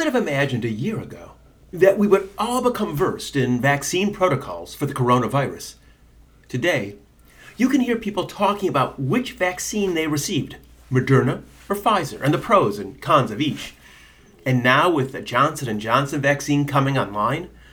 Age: 40-59